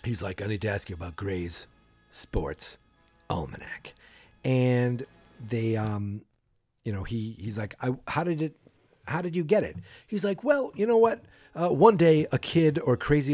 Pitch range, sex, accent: 110-155 Hz, male, American